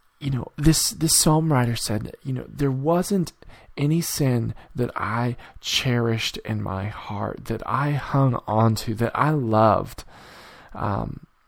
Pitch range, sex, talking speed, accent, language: 110-135 Hz, male, 145 wpm, American, English